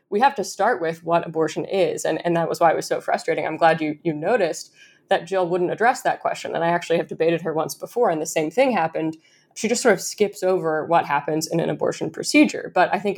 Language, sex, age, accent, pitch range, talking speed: English, female, 20-39, American, 160-180 Hz, 255 wpm